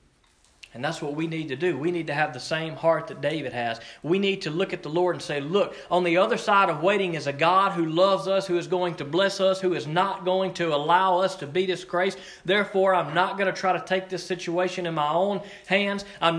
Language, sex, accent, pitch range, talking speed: English, male, American, 145-185 Hz, 255 wpm